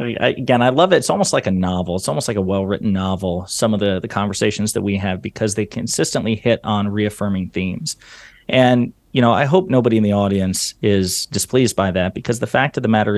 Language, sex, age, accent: English, male, 30-49, American